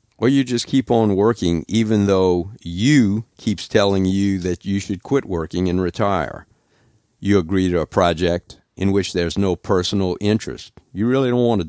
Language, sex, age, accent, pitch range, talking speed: English, male, 50-69, American, 85-105 Hz, 180 wpm